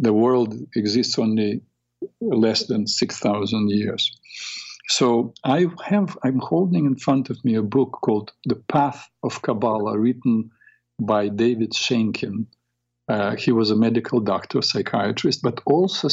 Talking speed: 140 wpm